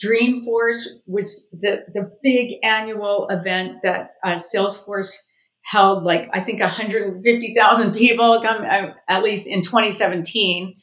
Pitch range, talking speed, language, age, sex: 175-215 Hz, 120 wpm, English, 50-69, female